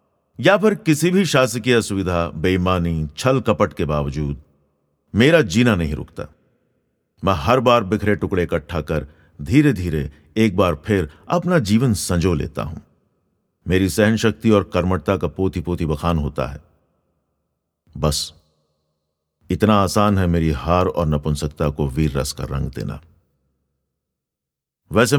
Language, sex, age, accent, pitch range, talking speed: Hindi, male, 50-69, native, 75-105 Hz, 135 wpm